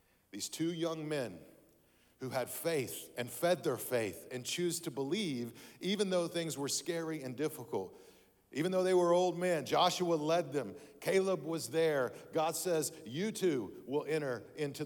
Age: 50-69